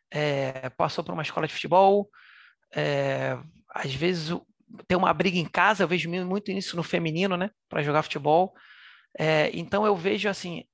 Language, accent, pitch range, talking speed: Portuguese, Brazilian, 160-200 Hz, 150 wpm